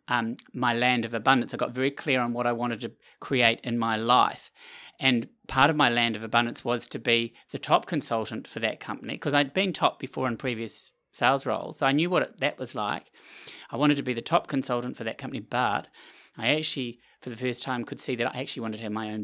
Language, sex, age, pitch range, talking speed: English, male, 30-49, 115-135 Hz, 240 wpm